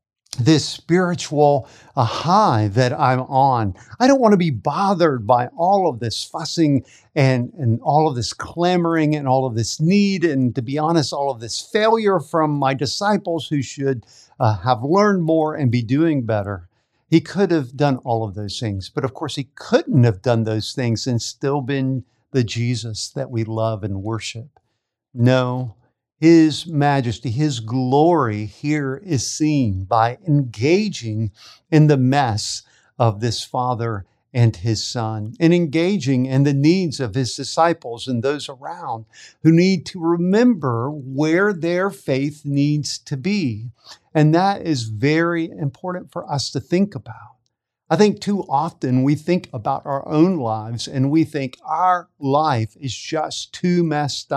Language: English